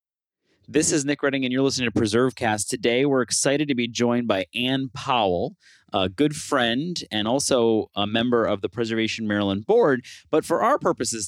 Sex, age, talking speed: male, 30-49, 185 wpm